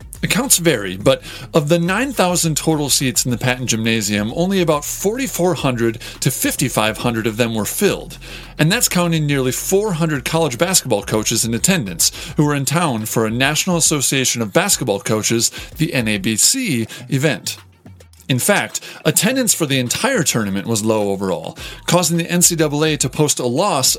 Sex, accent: male, American